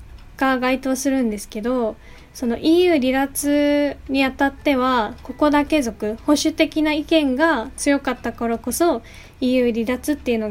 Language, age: Japanese, 20-39